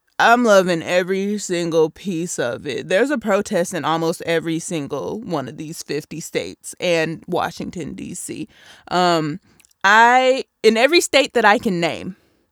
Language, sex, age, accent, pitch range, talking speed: English, female, 20-39, American, 170-270 Hz, 150 wpm